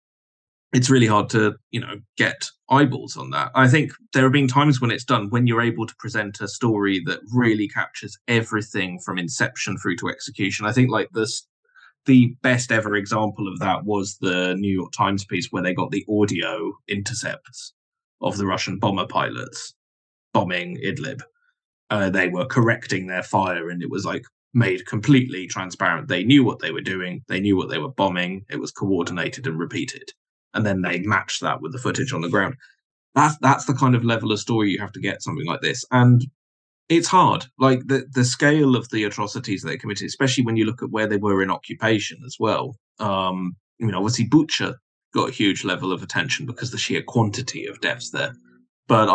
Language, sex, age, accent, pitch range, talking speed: English, male, 20-39, British, 100-130 Hz, 200 wpm